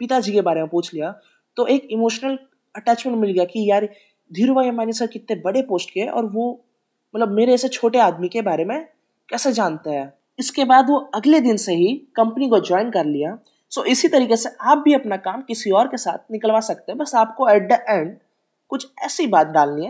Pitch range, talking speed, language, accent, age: 185-260 Hz, 80 wpm, Hindi, native, 20-39